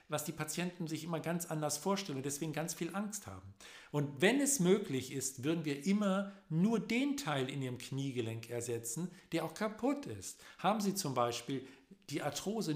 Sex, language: male, German